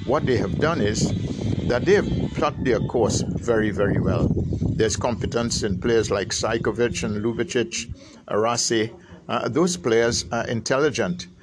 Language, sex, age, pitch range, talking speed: English, male, 60-79, 105-130 Hz, 145 wpm